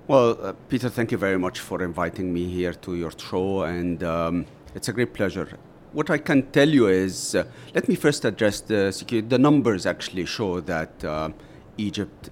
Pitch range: 90-120 Hz